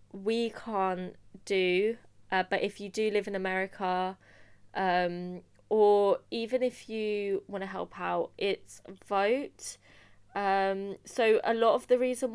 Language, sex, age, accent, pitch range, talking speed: English, female, 20-39, British, 175-210 Hz, 140 wpm